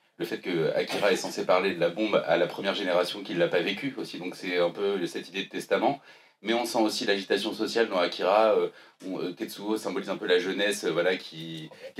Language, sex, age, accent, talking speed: French, male, 30-49, French, 225 wpm